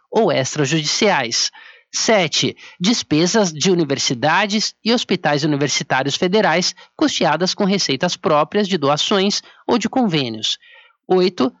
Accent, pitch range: Brazilian, 160-215 Hz